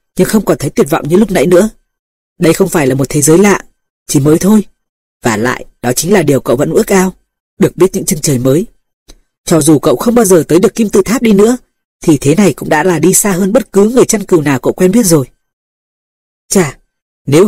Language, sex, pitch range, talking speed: Vietnamese, female, 150-200 Hz, 245 wpm